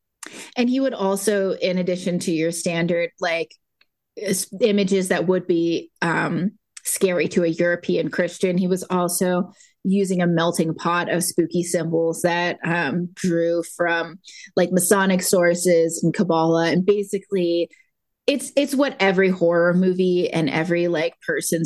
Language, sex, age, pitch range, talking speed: English, female, 20-39, 170-205 Hz, 140 wpm